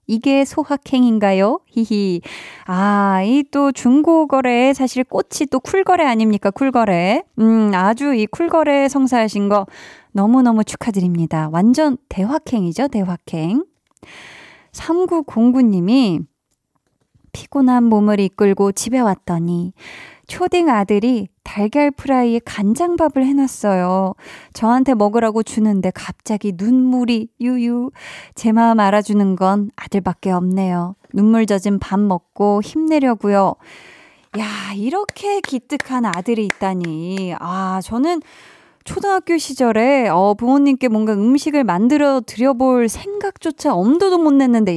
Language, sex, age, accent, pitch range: Korean, female, 20-39, native, 200-275 Hz